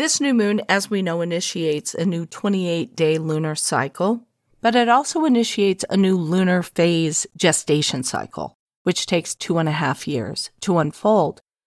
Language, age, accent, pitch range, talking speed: English, 50-69, American, 165-215 Hz, 160 wpm